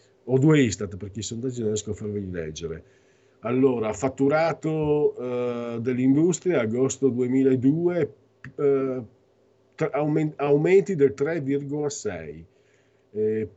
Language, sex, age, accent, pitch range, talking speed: Italian, male, 40-59, native, 105-140 Hz, 85 wpm